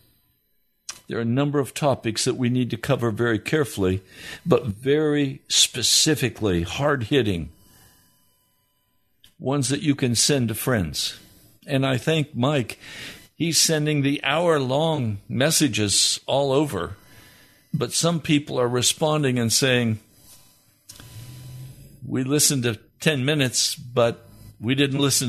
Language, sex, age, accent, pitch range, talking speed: English, male, 60-79, American, 110-145 Hz, 120 wpm